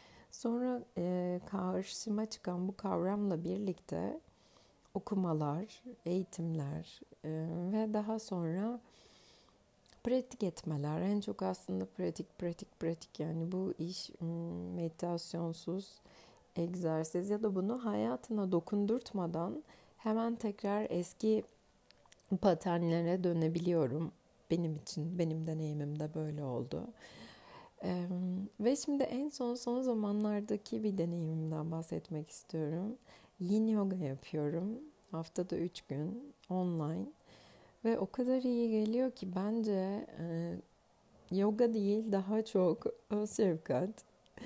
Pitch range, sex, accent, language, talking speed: 165-210 Hz, female, native, Turkish, 100 wpm